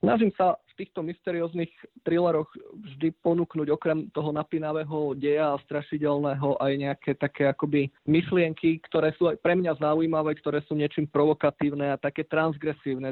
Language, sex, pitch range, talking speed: Slovak, male, 140-160 Hz, 145 wpm